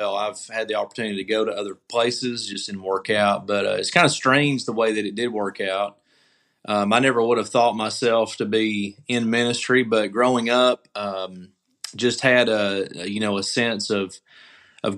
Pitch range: 105-120 Hz